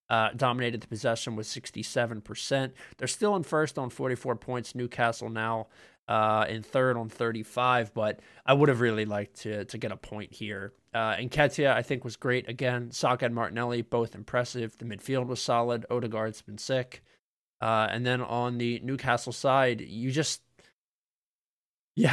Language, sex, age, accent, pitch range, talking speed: English, male, 20-39, American, 110-125 Hz, 170 wpm